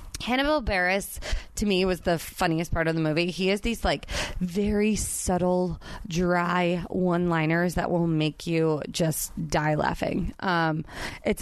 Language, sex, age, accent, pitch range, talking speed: English, female, 20-39, American, 170-225 Hz, 150 wpm